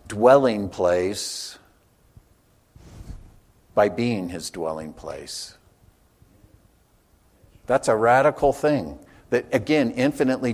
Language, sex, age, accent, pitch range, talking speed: English, male, 60-79, American, 100-125 Hz, 80 wpm